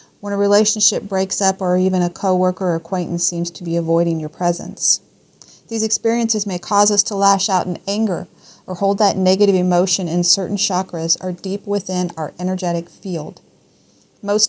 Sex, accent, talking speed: female, American, 175 wpm